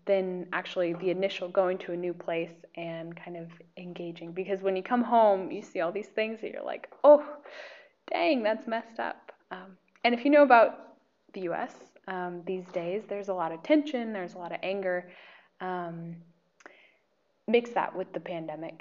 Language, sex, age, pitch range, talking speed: Slovak, female, 20-39, 180-235 Hz, 185 wpm